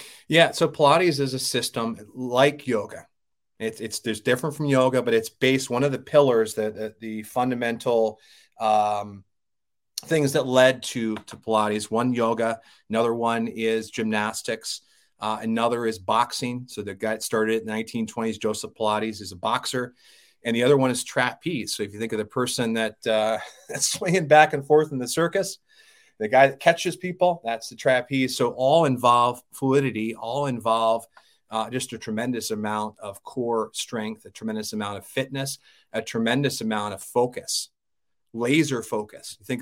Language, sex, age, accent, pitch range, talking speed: English, male, 30-49, American, 110-135 Hz, 170 wpm